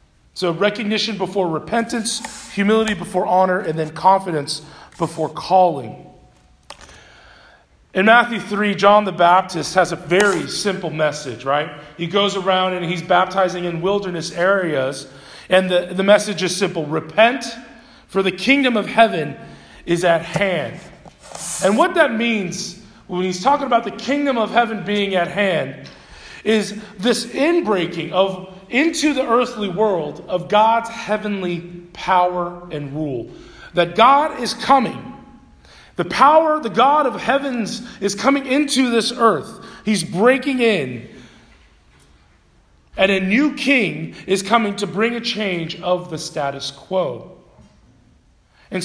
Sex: male